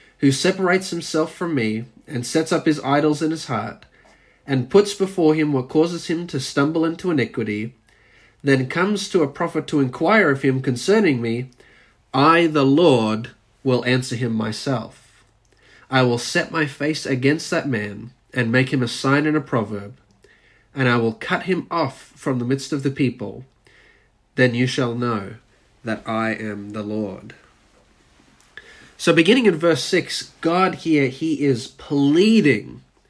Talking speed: 160 wpm